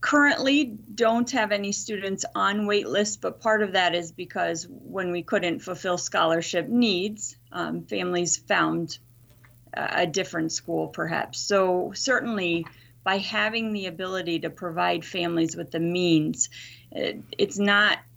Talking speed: 135 wpm